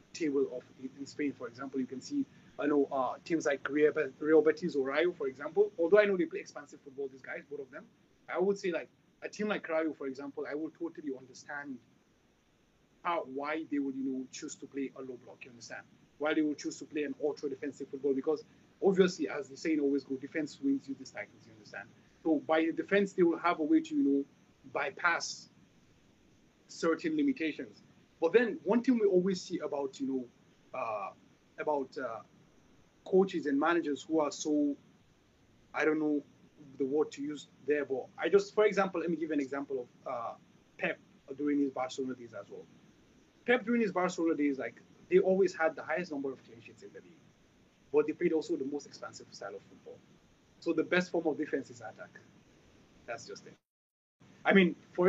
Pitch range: 140-180 Hz